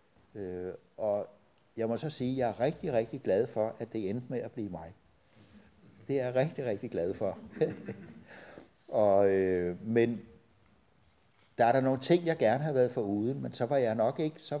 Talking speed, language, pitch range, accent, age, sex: 195 wpm, Danish, 100-140 Hz, native, 60-79, male